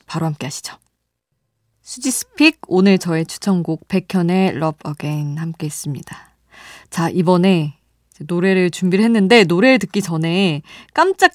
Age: 20-39